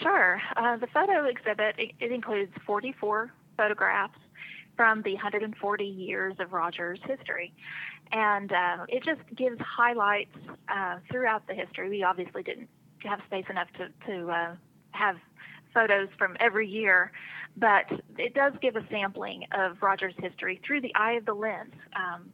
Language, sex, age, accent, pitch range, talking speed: English, female, 30-49, American, 180-220 Hz, 150 wpm